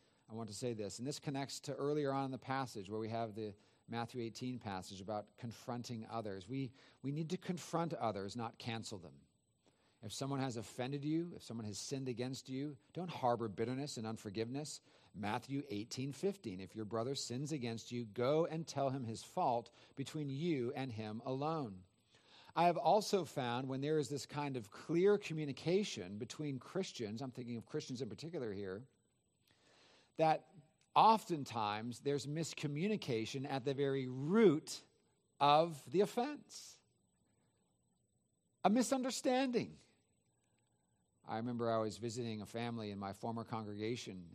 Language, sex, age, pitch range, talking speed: English, male, 40-59, 115-145 Hz, 155 wpm